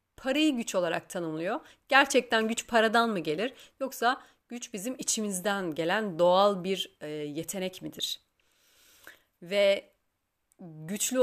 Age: 30-49